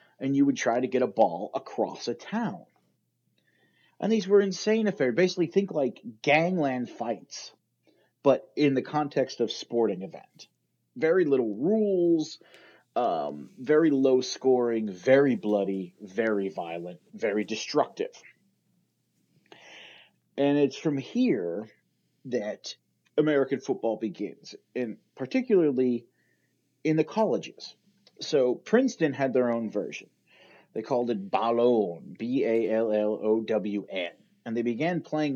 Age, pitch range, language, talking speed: 30-49, 110-150 Hz, English, 115 wpm